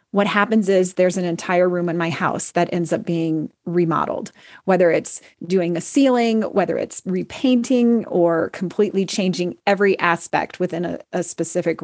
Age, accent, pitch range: 30-49, American, 175-210 Hz